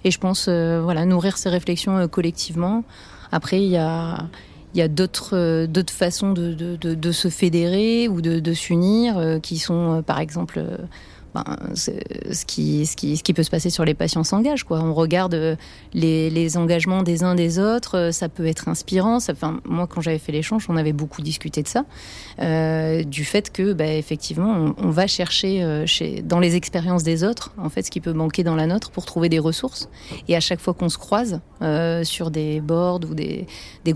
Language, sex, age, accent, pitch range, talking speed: French, female, 30-49, French, 160-180 Hz, 215 wpm